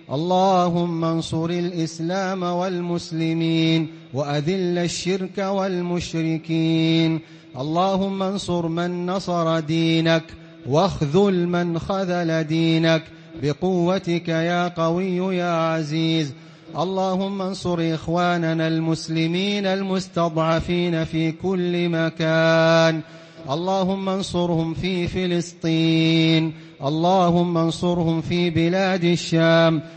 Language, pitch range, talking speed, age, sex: English, 160-180 Hz, 75 wpm, 30-49, male